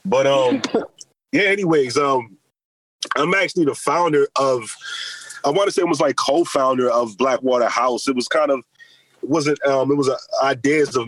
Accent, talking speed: American, 180 wpm